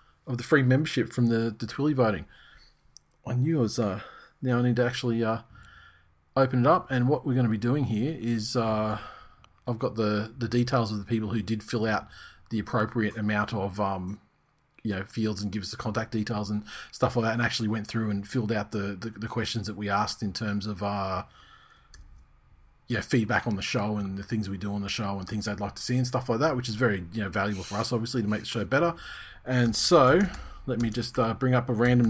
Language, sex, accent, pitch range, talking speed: English, male, Australian, 105-130 Hz, 235 wpm